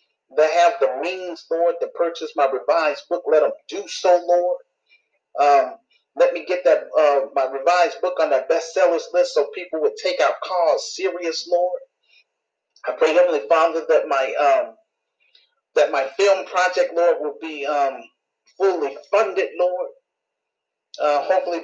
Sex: male